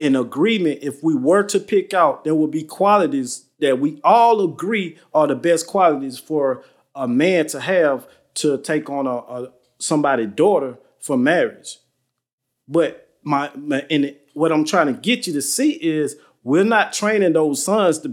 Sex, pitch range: male, 135-205 Hz